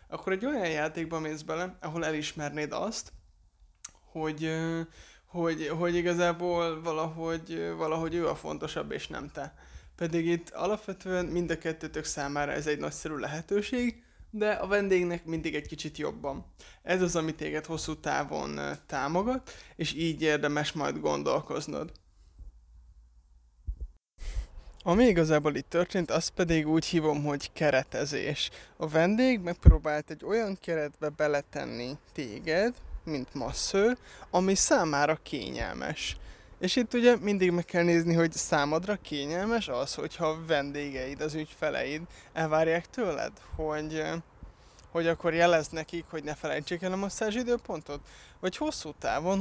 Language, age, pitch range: Hungarian, 20-39, 150-175 Hz